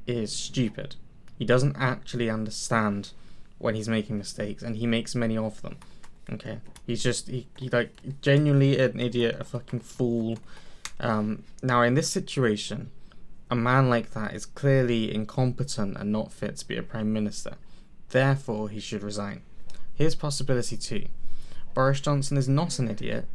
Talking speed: 150 wpm